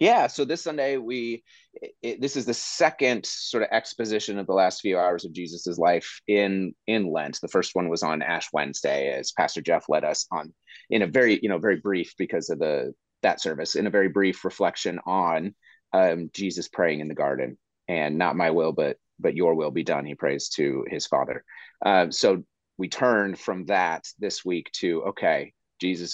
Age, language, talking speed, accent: 30-49, English, 200 wpm, American